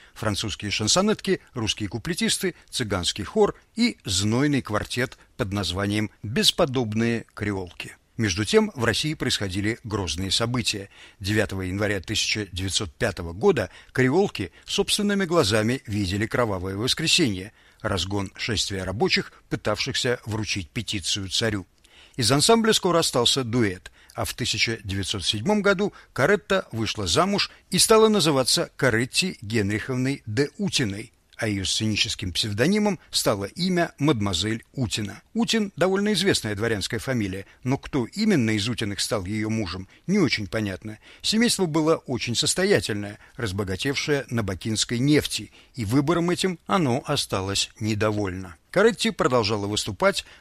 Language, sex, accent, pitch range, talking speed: Russian, male, native, 105-155 Hz, 115 wpm